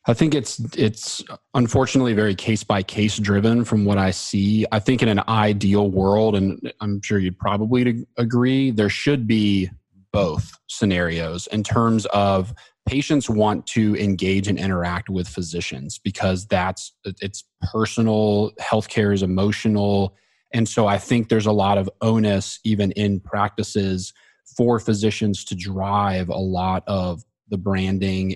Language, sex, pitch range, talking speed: English, male, 95-110 Hz, 145 wpm